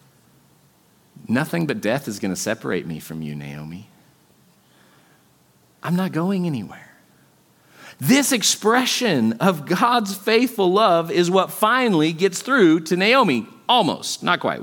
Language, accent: English, American